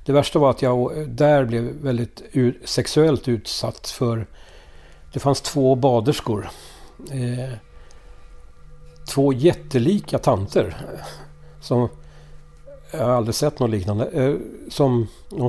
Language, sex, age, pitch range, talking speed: Swedish, male, 60-79, 115-150 Hz, 110 wpm